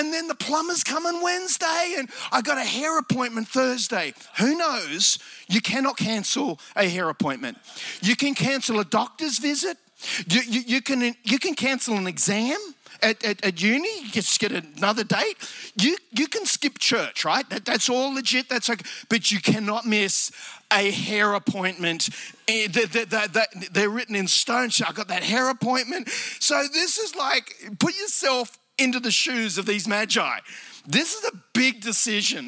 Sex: male